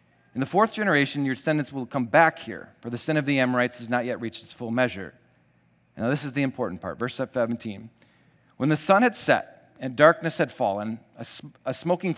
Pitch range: 125-160 Hz